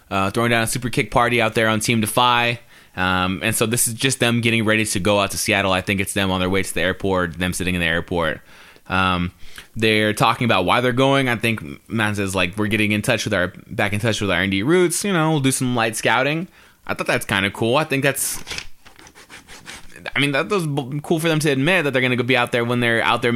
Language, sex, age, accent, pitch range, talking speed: English, male, 20-39, American, 105-135 Hz, 260 wpm